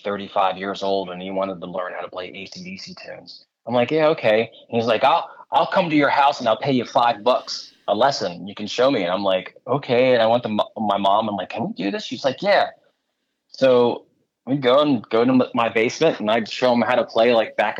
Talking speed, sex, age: 245 wpm, male, 20-39